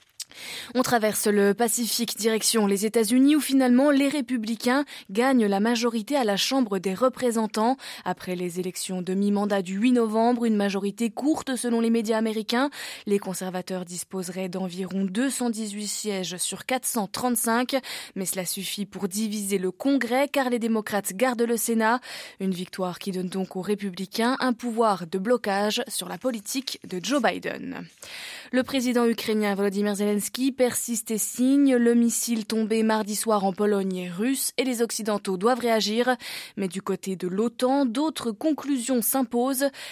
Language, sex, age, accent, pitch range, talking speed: French, female, 20-39, French, 200-250 Hz, 155 wpm